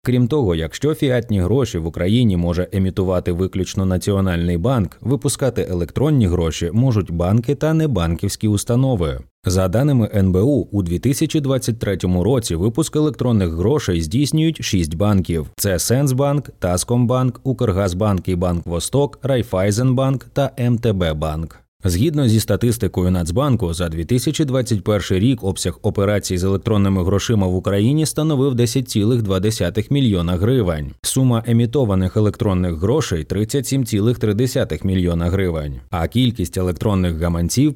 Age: 20-39